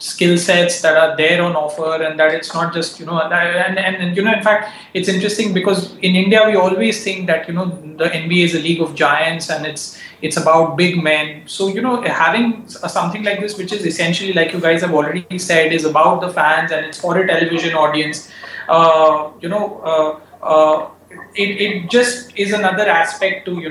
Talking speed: 215 wpm